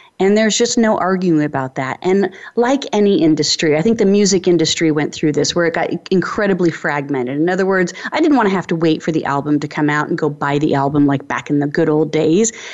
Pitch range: 155-205 Hz